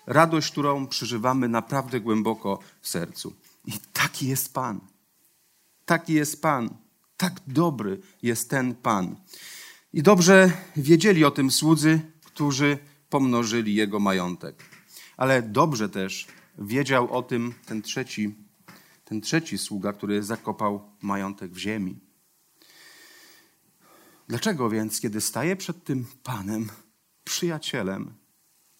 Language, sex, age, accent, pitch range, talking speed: Polish, male, 40-59, native, 105-145 Hz, 110 wpm